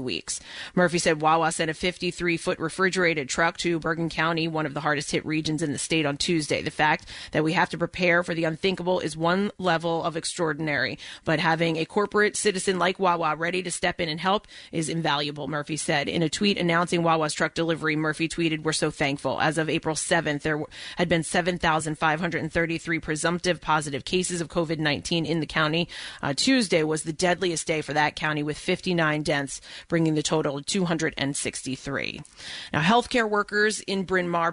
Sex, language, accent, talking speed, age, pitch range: female, English, American, 180 wpm, 30-49, 155-180 Hz